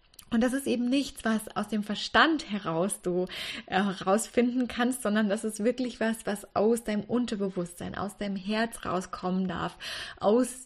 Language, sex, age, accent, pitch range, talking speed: German, female, 20-39, German, 195-245 Hz, 160 wpm